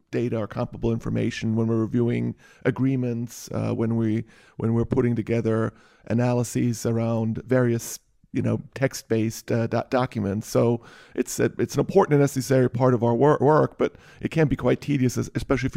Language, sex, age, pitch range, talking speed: English, male, 40-59, 120-135 Hz, 180 wpm